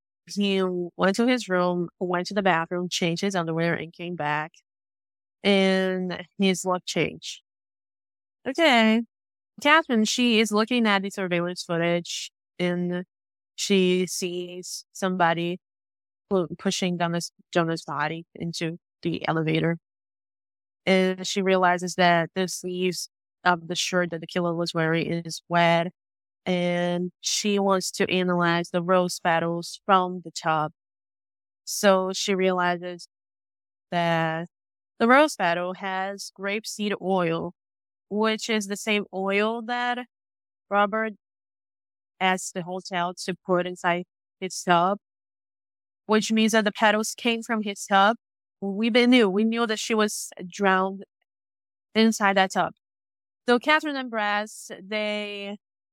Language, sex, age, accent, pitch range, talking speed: English, female, 20-39, American, 165-200 Hz, 130 wpm